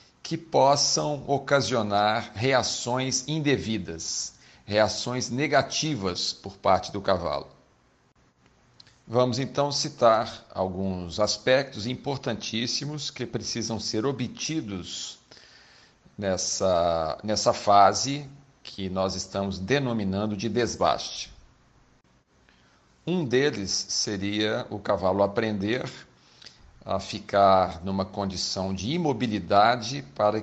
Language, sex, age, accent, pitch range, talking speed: Portuguese, male, 50-69, Brazilian, 95-135 Hz, 85 wpm